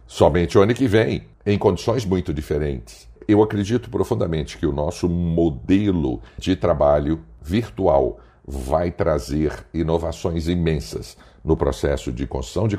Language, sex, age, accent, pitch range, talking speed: Portuguese, male, 60-79, Brazilian, 75-95 Hz, 130 wpm